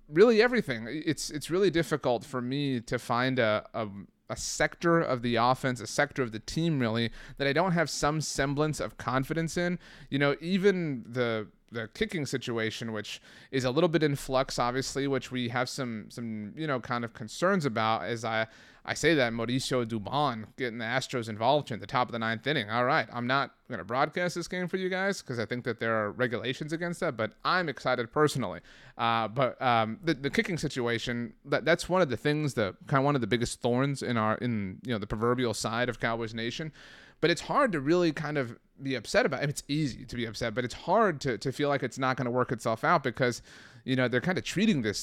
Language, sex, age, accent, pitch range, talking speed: English, male, 30-49, American, 115-150 Hz, 230 wpm